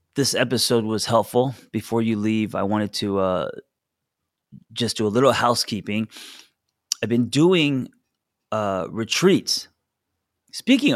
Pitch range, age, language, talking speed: 100-120 Hz, 30-49, English, 120 wpm